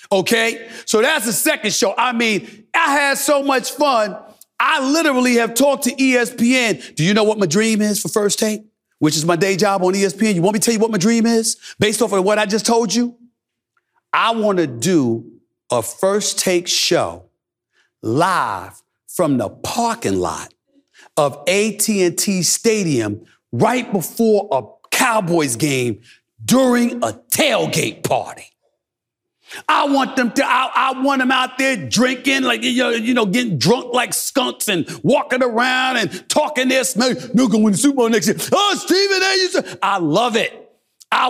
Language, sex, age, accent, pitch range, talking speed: English, male, 40-59, American, 180-250 Hz, 175 wpm